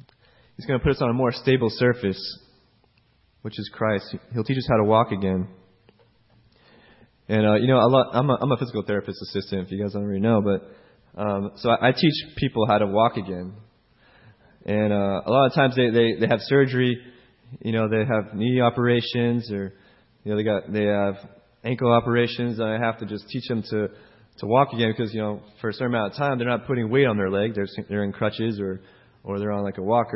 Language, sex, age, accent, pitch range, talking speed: English, male, 20-39, American, 105-130 Hz, 225 wpm